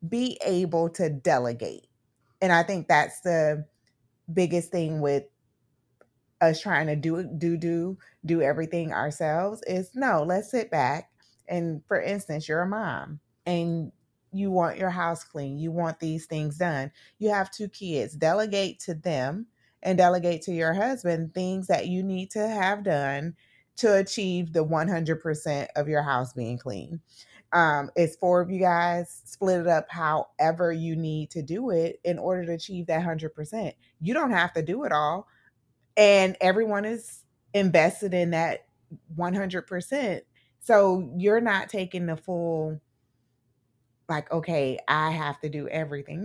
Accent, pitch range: American, 150-185 Hz